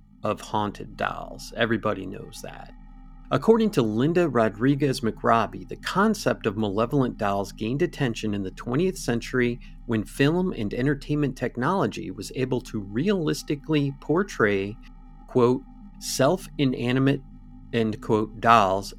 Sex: male